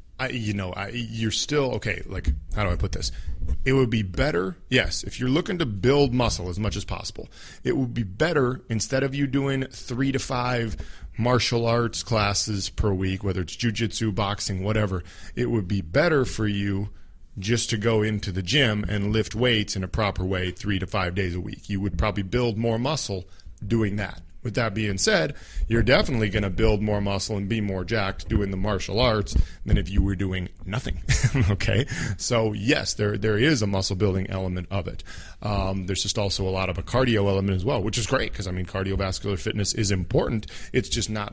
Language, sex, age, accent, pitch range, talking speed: English, male, 40-59, American, 95-115 Hz, 210 wpm